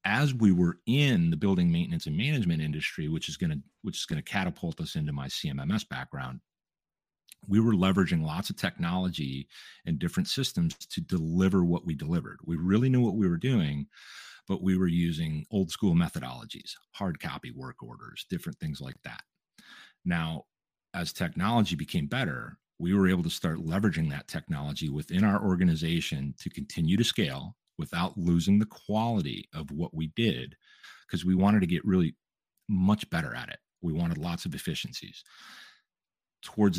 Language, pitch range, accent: English, 80-105 Hz, American